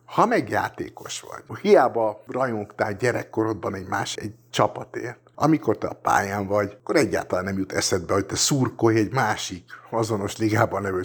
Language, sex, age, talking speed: Hungarian, male, 50-69, 150 wpm